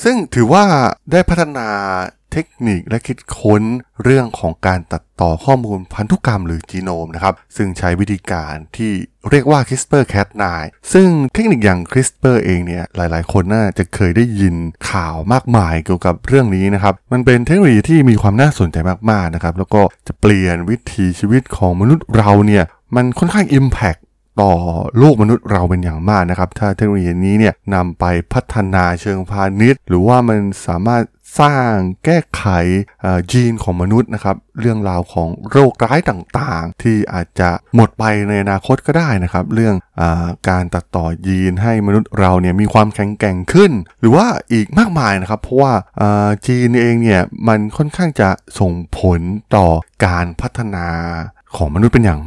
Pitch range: 90-120 Hz